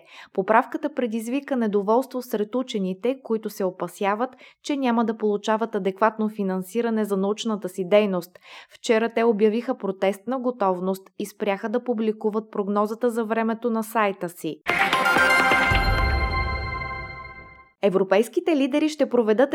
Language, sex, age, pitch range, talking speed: Bulgarian, female, 20-39, 200-245 Hz, 115 wpm